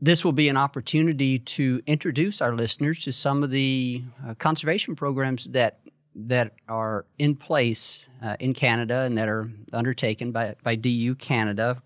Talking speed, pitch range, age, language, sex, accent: 165 wpm, 105-130 Hz, 40-59, English, male, American